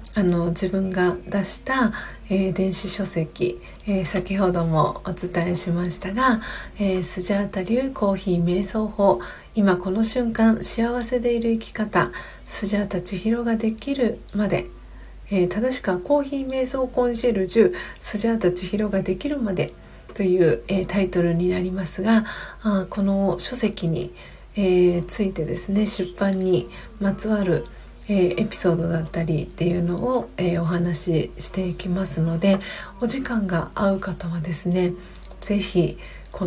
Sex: female